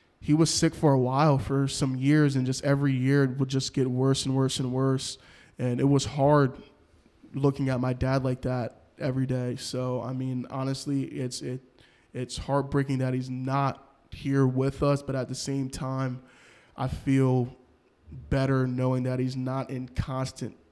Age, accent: 20-39, American